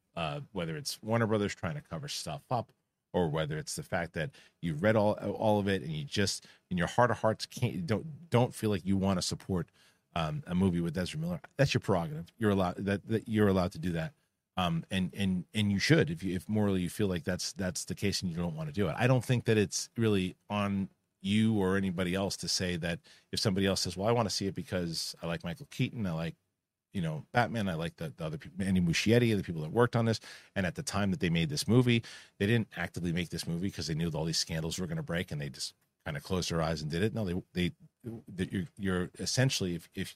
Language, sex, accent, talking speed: English, male, American, 260 wpm